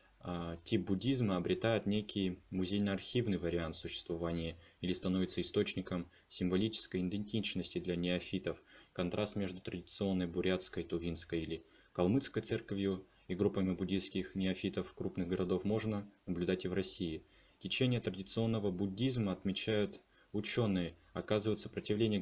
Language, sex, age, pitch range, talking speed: Russian, male, 20-39, 90-105 Hz, 110 wpm